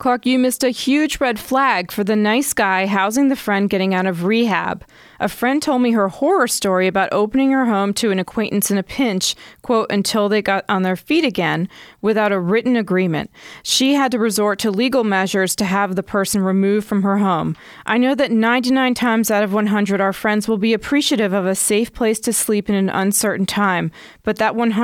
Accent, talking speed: American, 210 wpm